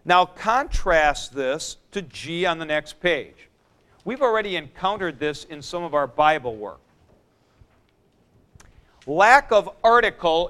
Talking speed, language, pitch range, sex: 125 wpm, English, 145-195 Hz, male